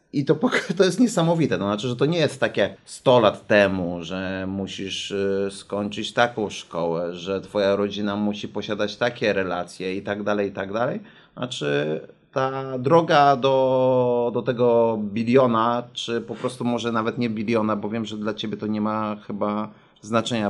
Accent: native